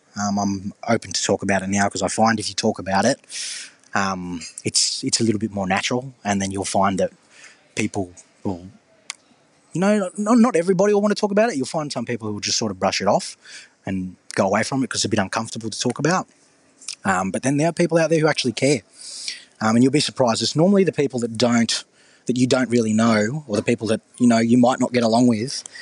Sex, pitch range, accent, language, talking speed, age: male, 100-130 Hz, Australian, English, 245 wpm, 20-39